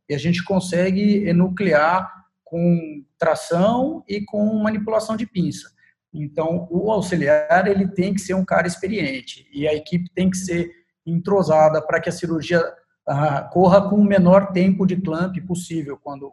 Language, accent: Portuguese, Brazilian